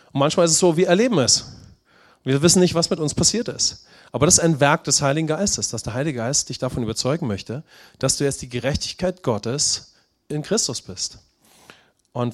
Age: 30-49